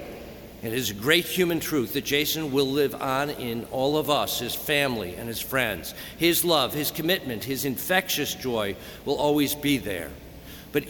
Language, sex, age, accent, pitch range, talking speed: English, male, 50-69, American, 120-145 Hz, 175 wpm